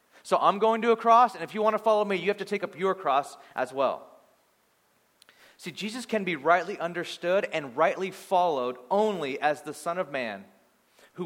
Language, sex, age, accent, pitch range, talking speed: English, male, 30-49, American, 160-210 Hz, 205 wpm